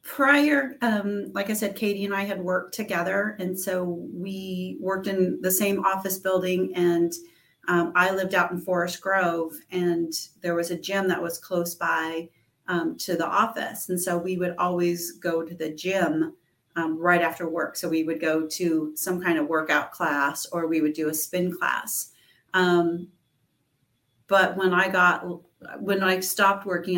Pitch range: 165-185 Hz